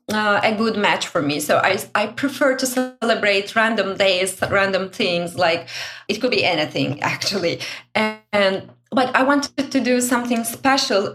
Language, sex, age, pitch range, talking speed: English, female, 30-49, 185-255 Hz, 165 wpm